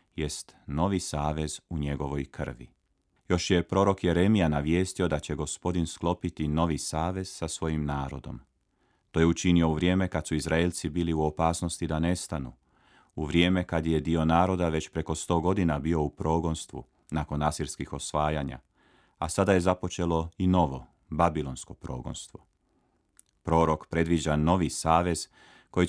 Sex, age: male, 30-49